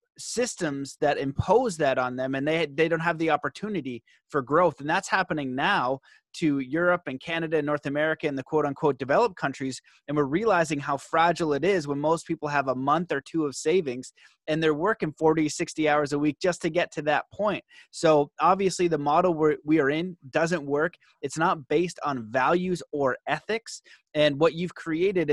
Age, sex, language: 30-49, male, English